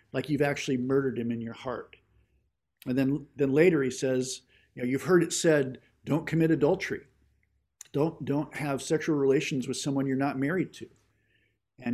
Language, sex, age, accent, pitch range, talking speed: English, male, 50-69, American, 115-140 Hz, 175 wpm